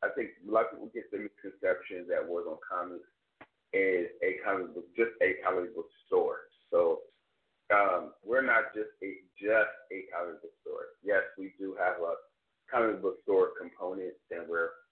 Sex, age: male, 30-49